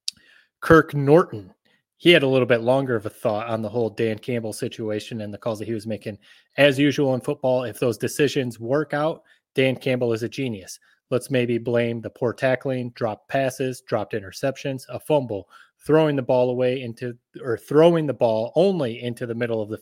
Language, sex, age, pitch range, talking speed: English, male, 30-49, 110-130 Hz, 195 wpm